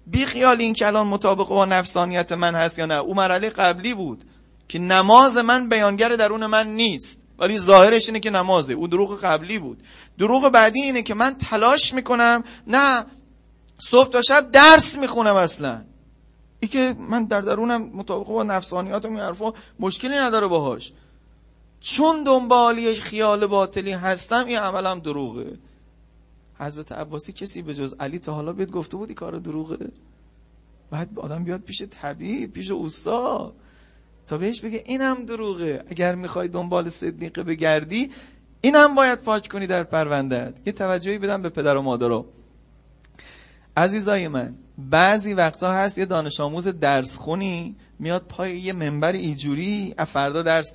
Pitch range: 155-225 Hz